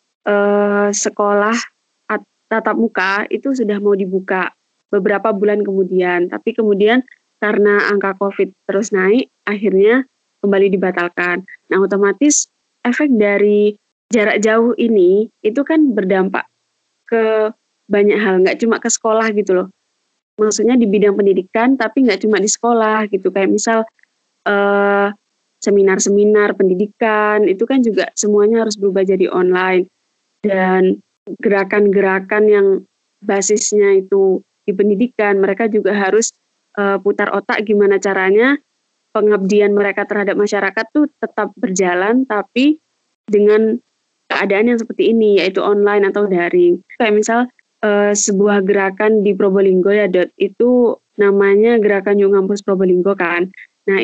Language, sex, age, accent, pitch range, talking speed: Indonesian, female, 20-39, native, 200-225 Hz, 125 wpm